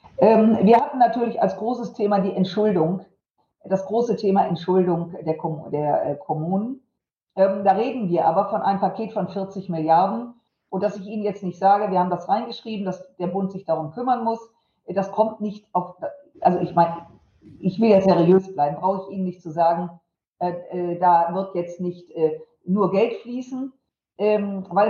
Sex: female